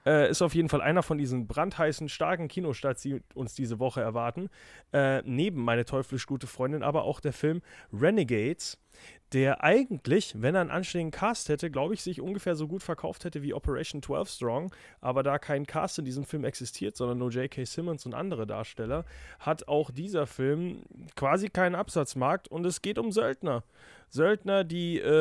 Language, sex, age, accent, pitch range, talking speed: German, male, 30-49, German, 130-170 Hz, 185 wpm